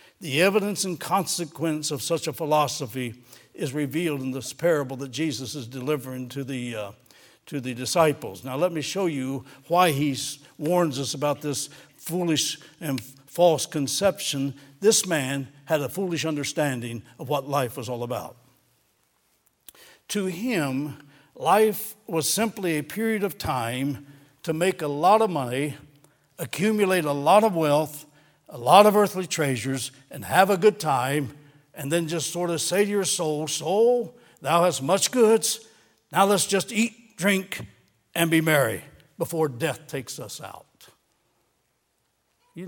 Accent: American